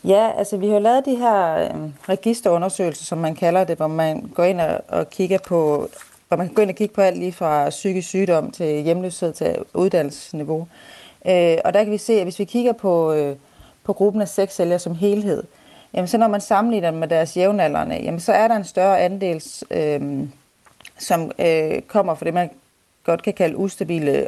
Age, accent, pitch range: 30-49, native, 160-195 Hz